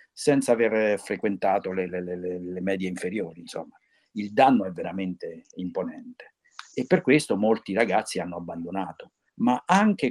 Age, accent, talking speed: 50-69, native, 140 wpm